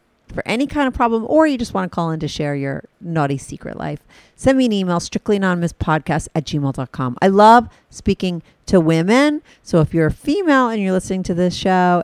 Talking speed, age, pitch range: 215 wpm, 40-59, 150-205 Hz